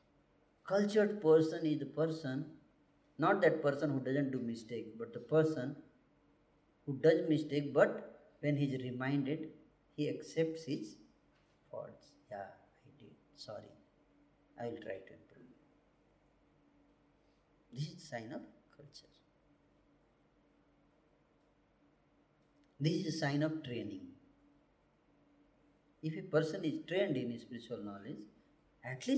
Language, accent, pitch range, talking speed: Hindi, native, 130-160 Hz, 115 wpm